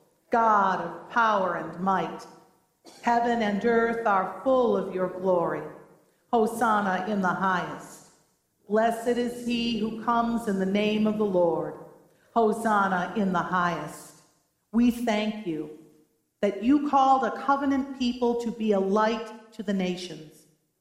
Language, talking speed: English, 140 wpm